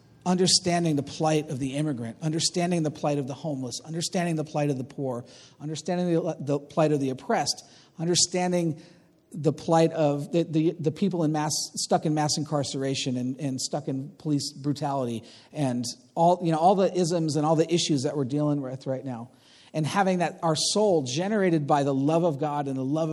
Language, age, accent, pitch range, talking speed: English, 40-59, American, 135-165 Hz, 200 wpm